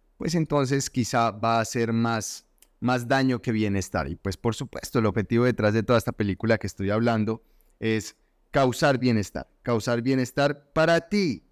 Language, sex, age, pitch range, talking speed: Spanish, male, 30-49, 105-140 Hz, 165 wpm